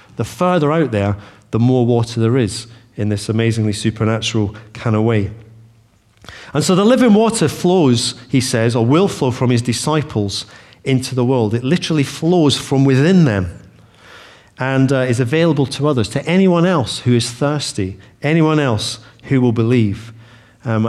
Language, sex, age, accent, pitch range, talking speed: English, male, 40-59, British, 110-145 Hz, 165 wpm